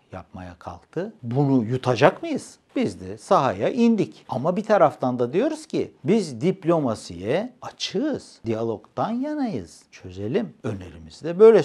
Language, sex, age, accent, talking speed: Turkish, male, 60-79, native, 120 wpm